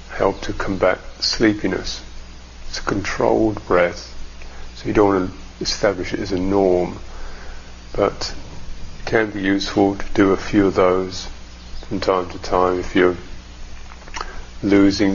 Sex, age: male, 50-69